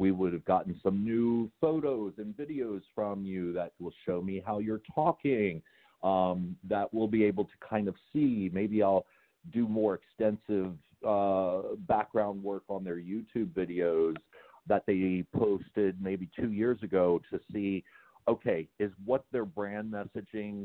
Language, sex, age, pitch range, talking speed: English, male, 40-59, 90-110 Hz, 155 wpm